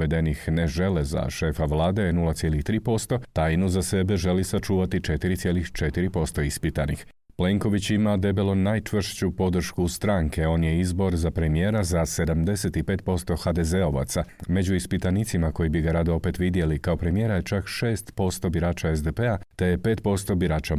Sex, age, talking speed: male, 40-59, 140 wpm